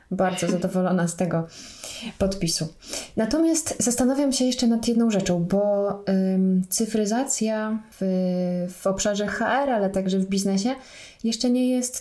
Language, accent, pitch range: Polish, native, 190-230 Hz